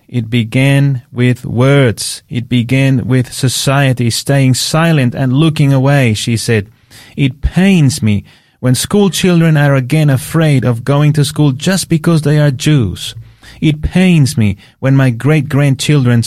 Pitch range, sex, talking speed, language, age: 120-150 Hz, male, 145 wpm, English, 30-49